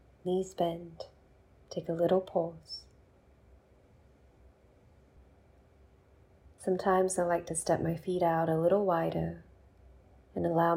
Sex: female